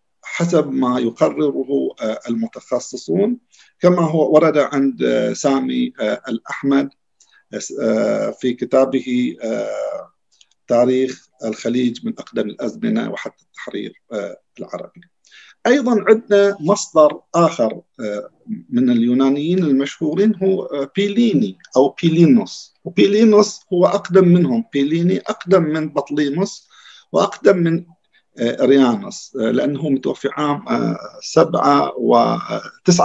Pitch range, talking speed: 140-215 Hz, 85 wpm